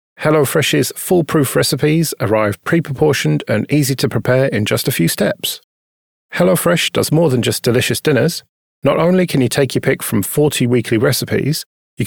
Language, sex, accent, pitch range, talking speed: English, male, British, 115-155 Hz, 165 wpm